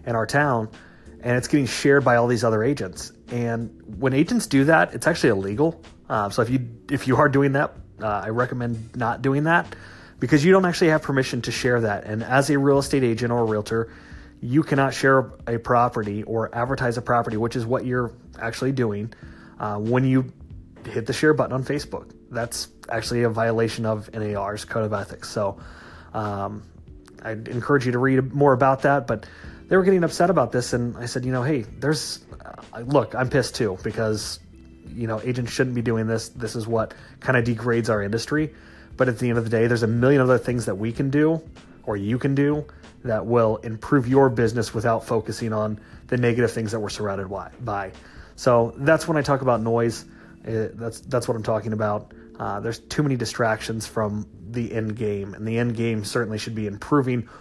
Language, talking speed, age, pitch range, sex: English, 205 wpm, 30-49, 110-130 Hz, male